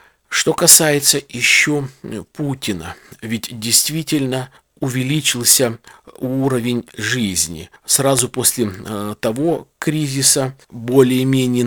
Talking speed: 70 wpm